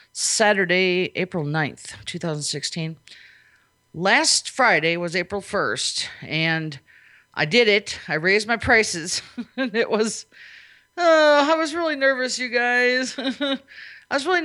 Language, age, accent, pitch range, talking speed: English, 40-59, American, 155-210 Hz, 125 wpm